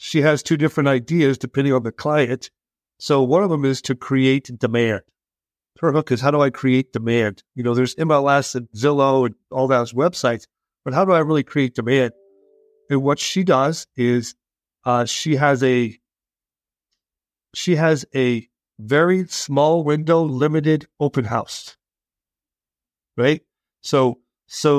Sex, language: male, English